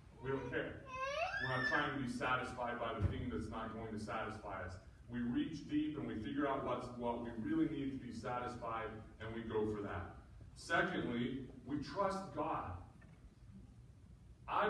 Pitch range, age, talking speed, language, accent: 115-160 Hz, 40-59, 175 wpm, English, American